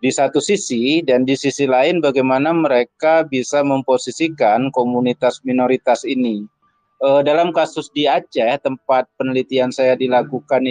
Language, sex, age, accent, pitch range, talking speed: Indonesian, male, 30-49, native, 130-150 Hz, 130 wpm